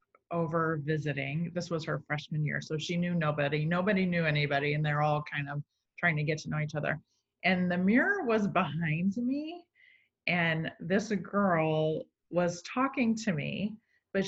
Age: 30-49